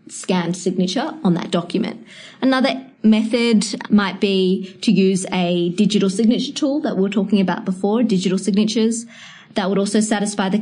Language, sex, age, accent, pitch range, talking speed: English, female, 20-39, Australian, 185-220 Hz, 155 wpm